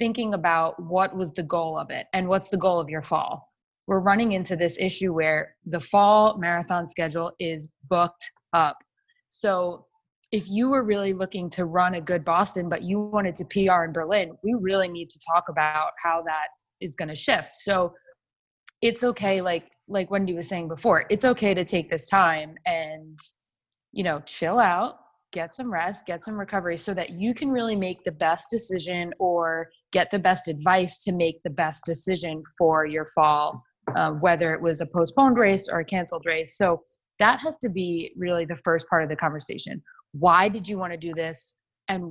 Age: 20-39